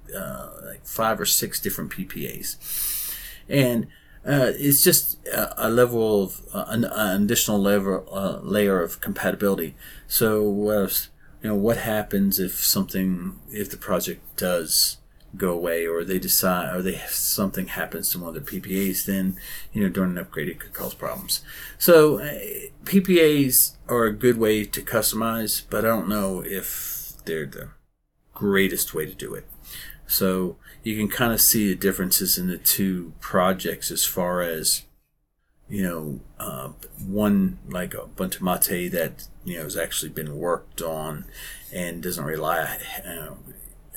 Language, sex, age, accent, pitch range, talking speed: English, male, 40-59, American, 95-110 Hz, 155 wpm